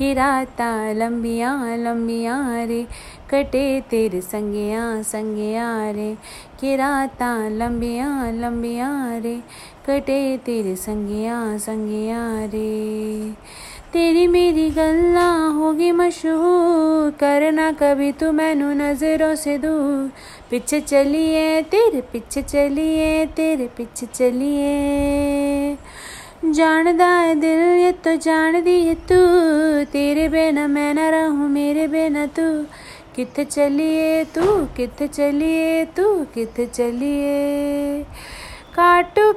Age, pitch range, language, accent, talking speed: 30-49, 245-340 Hz, Hindi, native, 90 wpm